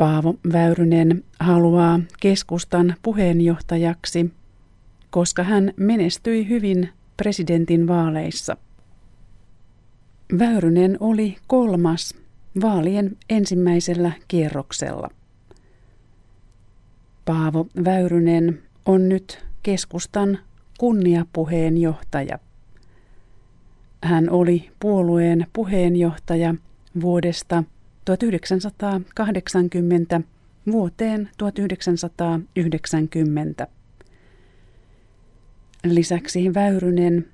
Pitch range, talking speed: 125-190 Hz, 55 wpm